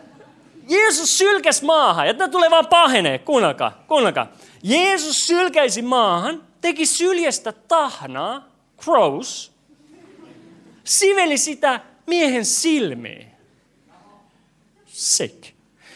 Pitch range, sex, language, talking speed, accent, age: 185-315 Hz, male, Finnish, 85 wpm, native, 40-59